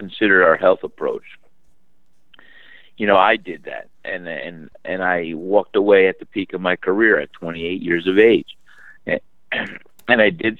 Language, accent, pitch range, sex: English, American, 90-105 Hz, male